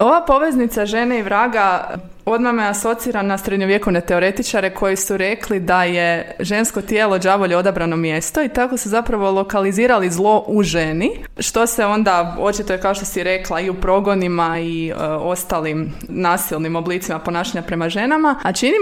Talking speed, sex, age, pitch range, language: 165 wpm, female, 20-39, 185-235 Hz, Croatian